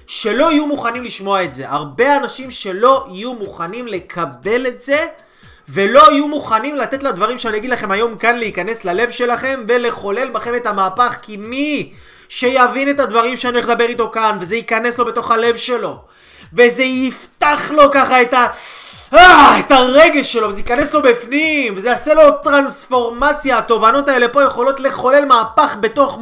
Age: 20-39